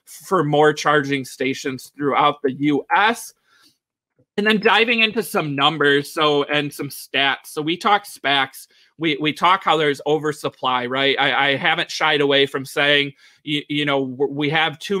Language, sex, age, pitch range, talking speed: English, male, 30-49, 145-170 Hz, 170 wpm